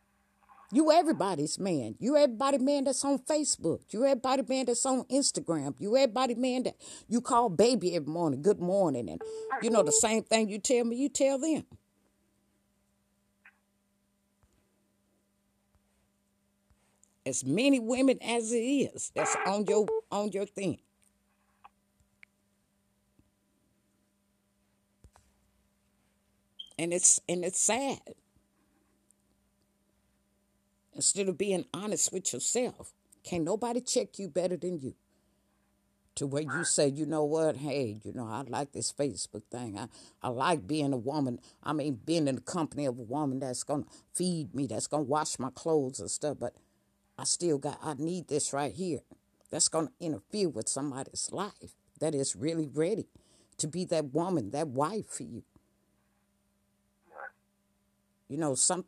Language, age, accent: English, 50-69, American